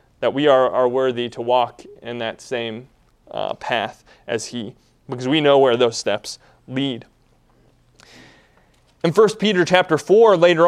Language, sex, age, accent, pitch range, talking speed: English, male, 30-49, American, 140-195 Hz, 150 wpm